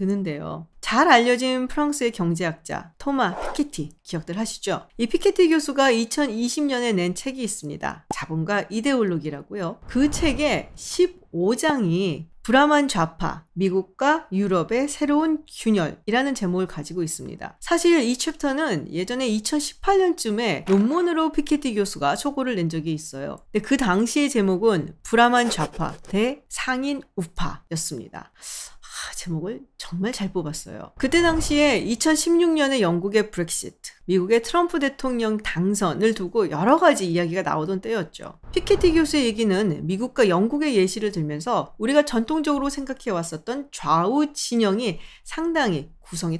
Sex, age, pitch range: female, 40-59, 180-285 Hz